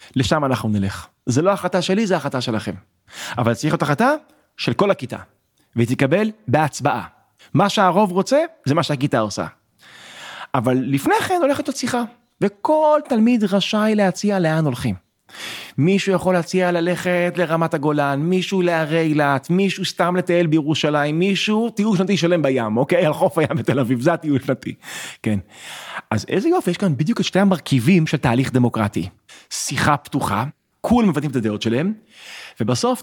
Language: Hebrew